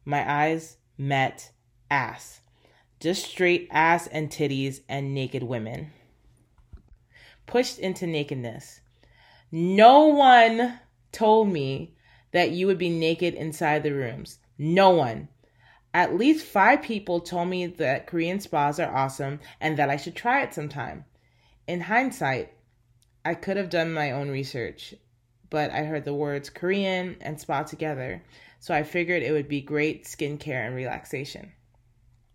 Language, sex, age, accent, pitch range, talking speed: English, female, 20-39, American, 130-170 Hz, 140 wpm